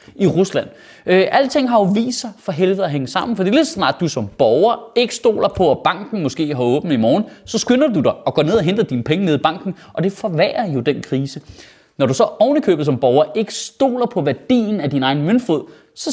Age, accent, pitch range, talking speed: 30-49, native, 175-255 Hz, 245 wpm